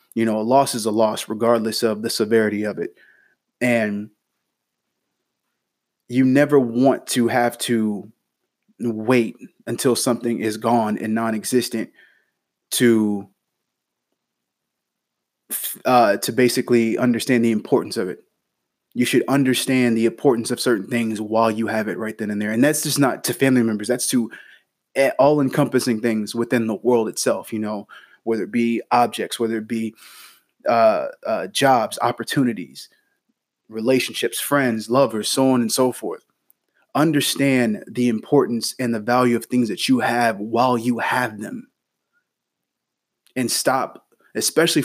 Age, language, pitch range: 20-39, English, 110-125 Hz